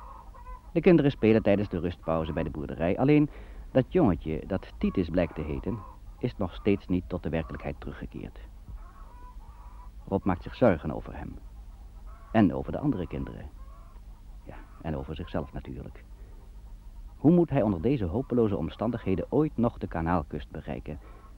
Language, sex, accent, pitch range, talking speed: Dutch, male, Dutch, 85-110 Hz, 150 wpm